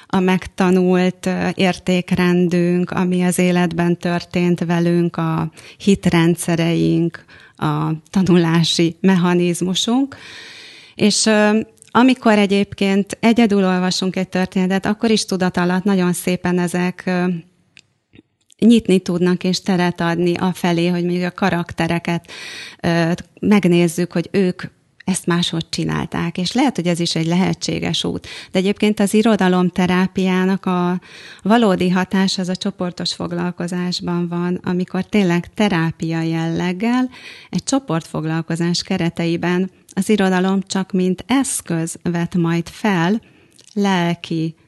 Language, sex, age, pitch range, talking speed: Hungarian, female, 30-49, 170-190 Hz, 105 wpm